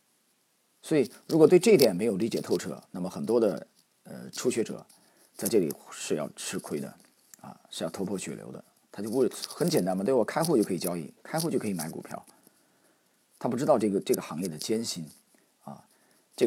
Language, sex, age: Chinese, male, 40-59